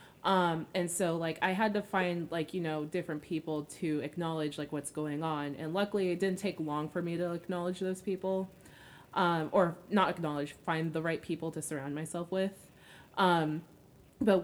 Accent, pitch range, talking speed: American, 145-185 Hz, 185 wpm